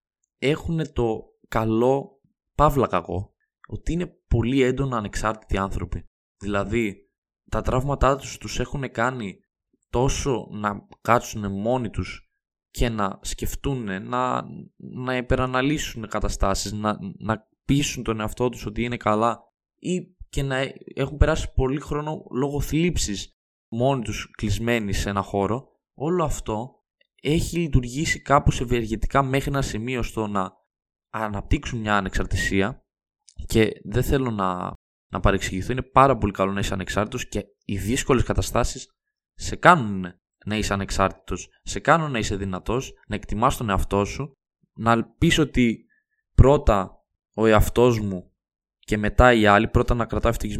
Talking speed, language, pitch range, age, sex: 135 wpm, Greek, 100-130 Hz, 20-39, male